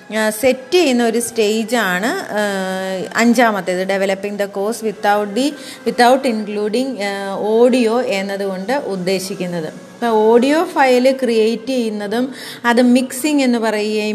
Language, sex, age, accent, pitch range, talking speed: Malayalam, female, 30-49, native, 210-255 Hz, 100 wpm